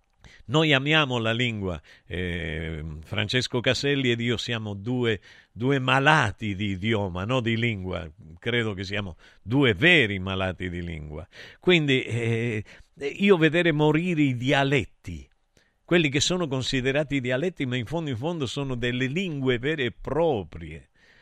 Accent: native